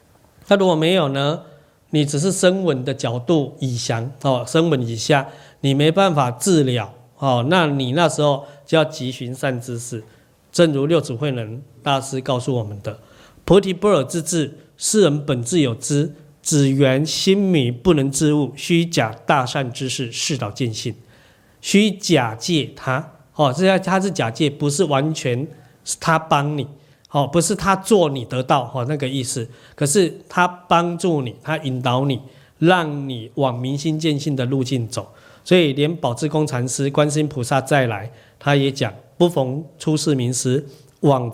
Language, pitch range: Chinese, 130-160 Hz